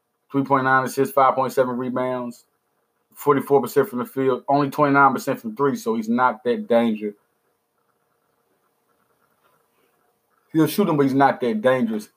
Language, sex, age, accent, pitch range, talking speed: English, male, 20-39, American, 110-145 Hz, 165 wpm